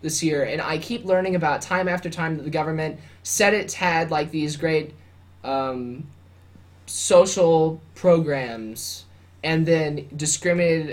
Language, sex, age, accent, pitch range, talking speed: English, male, 20-39, American, 135-170 Hz, 135 wpm